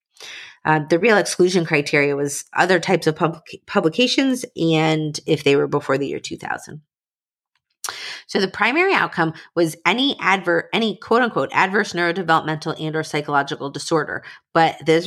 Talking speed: 145 wpm